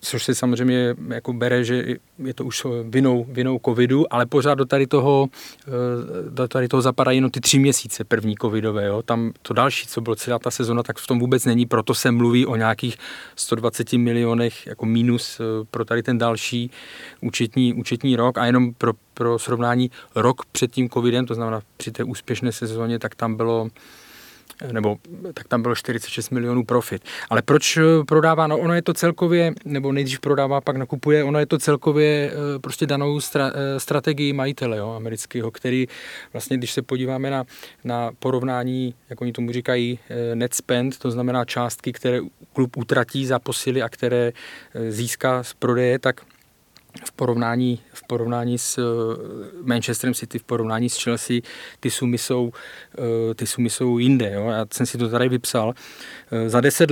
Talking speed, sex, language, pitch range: 170 wpm, male, Czech, 120-130 Hz